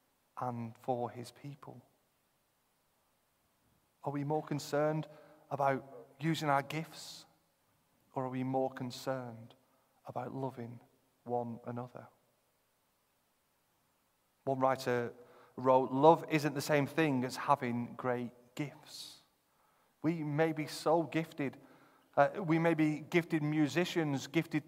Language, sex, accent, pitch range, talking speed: English, male, British, 130-155 Hz, 110 wpm